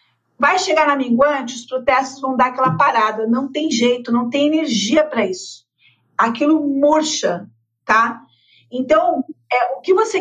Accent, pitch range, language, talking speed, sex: Brazilian, 235-300 Hz, Portuguese, 145 wpm, female